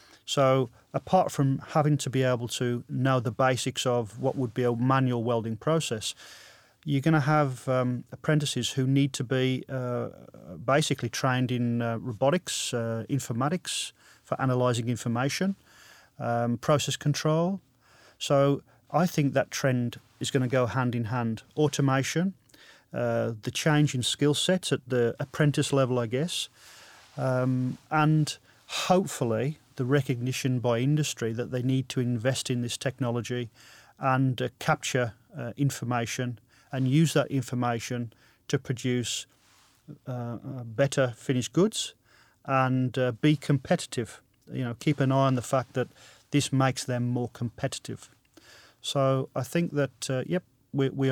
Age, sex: 30-49, male